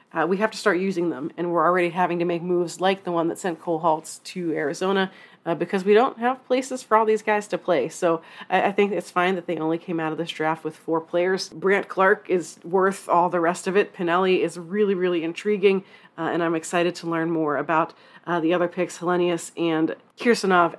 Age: 30-49